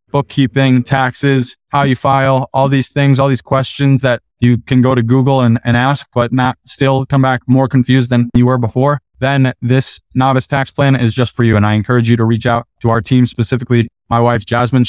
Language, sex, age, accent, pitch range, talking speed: English, male, 20-39, American, 115-135 Hz, 220 wpm